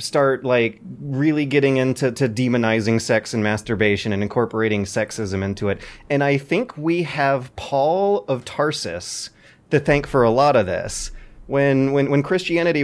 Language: English